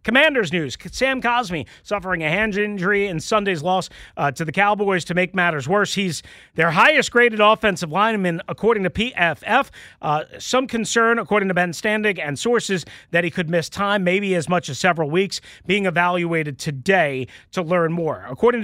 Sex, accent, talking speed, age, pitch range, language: male, American, 175 wpm, 40-59, 165-220 Hz, English